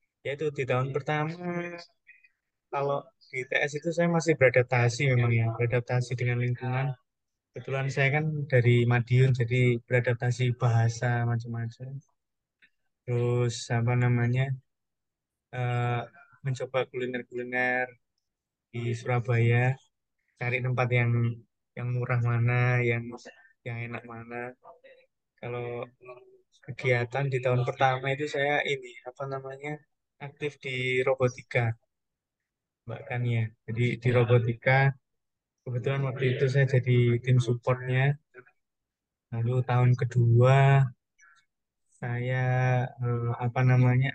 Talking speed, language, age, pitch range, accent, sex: 100 wpm, Indonesian, 20-39, 120-135 Hz, native, male